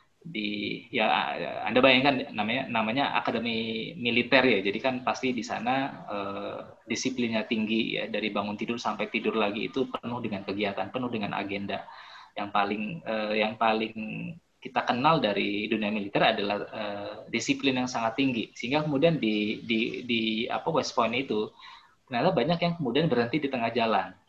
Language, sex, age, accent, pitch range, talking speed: Indonesian, male, 20-39, native, 110-135 Hz, 160 wpm